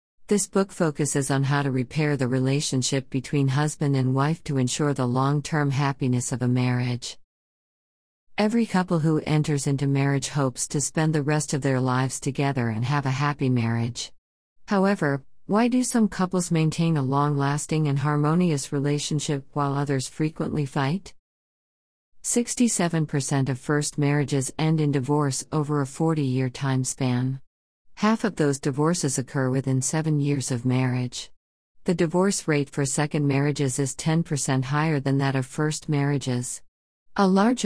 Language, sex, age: Spanish, female, 50-69